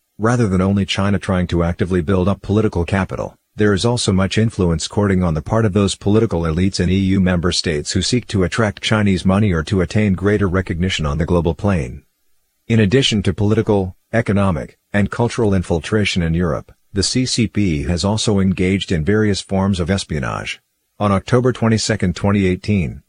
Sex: male